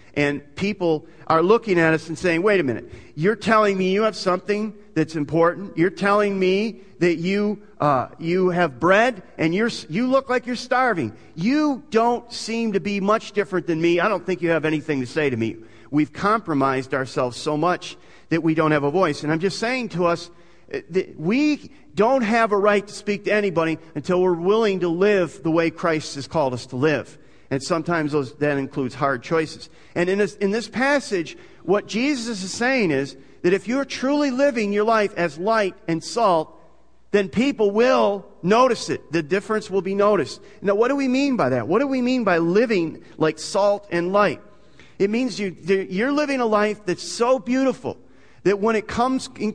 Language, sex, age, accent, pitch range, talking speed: English, male, 40-59, American, 165-220 Hz, 195 wpm